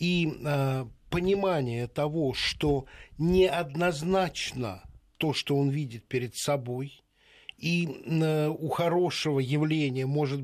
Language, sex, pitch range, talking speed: Russian, male, 130-165 Hz, 105 wpm